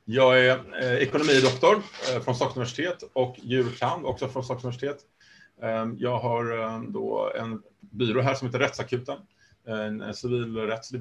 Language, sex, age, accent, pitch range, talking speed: Swedish, male, 30-49, Norwegian, 110-125 Hz, 125 wpm